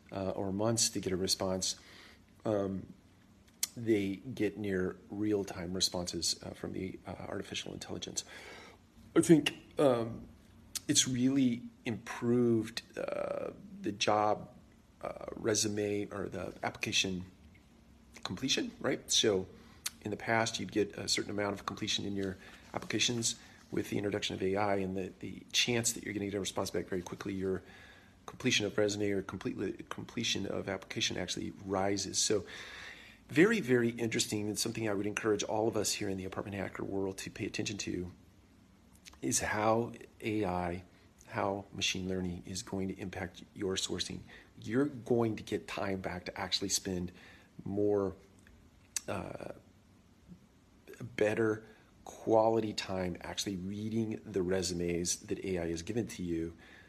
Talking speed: 145 wpm